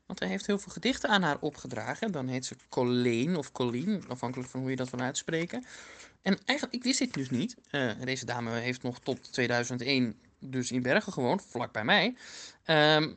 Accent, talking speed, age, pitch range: Dutch, 200 wpm, 20-39, 125-195 Hz